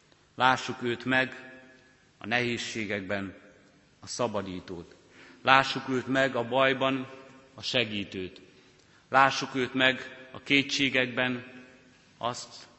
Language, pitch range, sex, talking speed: Hungarian, 105-125 Hz, male, 95 wpm